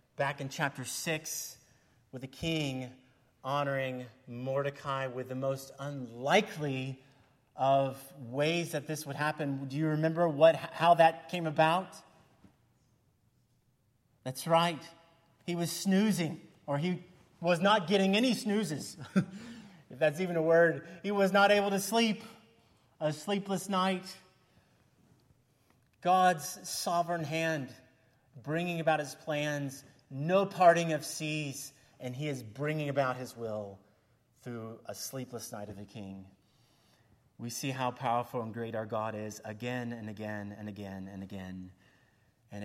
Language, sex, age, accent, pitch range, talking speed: English, male, 30-49, American, 125-180 Hz, 135 wpm